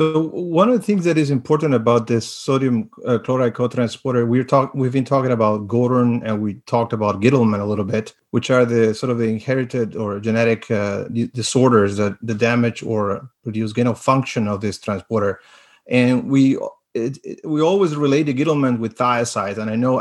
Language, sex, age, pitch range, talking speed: English, male, 30-49, 115-140 Hz, 200 wpm